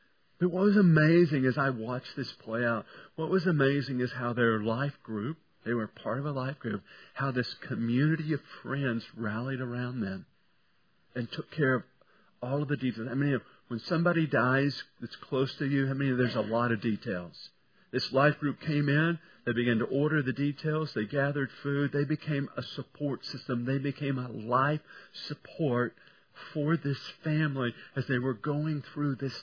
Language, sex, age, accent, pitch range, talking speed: English, male, 50-69, American, 125-155 Hz, 185 wpm